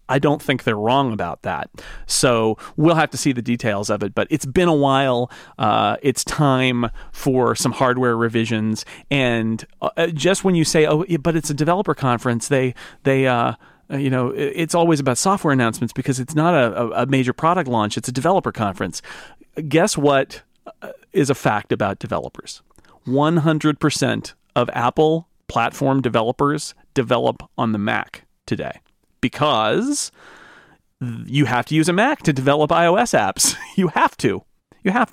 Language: English